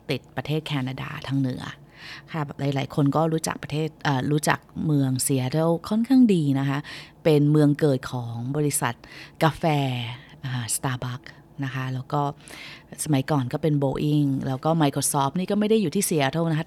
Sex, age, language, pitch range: female, 20-39, Thai, 140-165 Hz